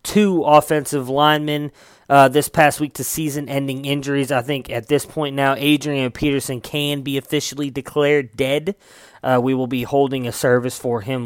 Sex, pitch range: male, 125-145 Hz